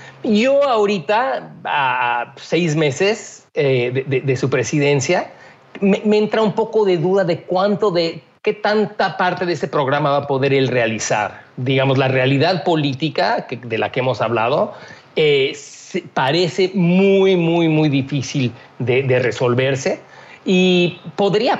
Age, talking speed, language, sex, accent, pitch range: 40-59, 140 wpm, Spanish, male, Mexican, 140-195 Hz